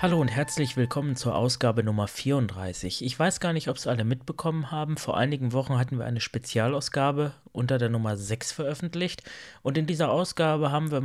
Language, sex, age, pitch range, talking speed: German, male, 30-49, 120-140 Hz, 190 wpm